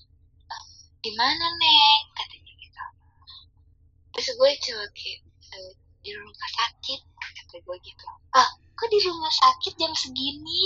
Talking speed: 130 wpm